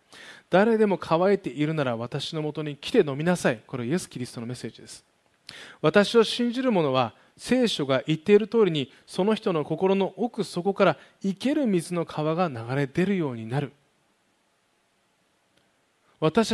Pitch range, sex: 135-195 Hz, male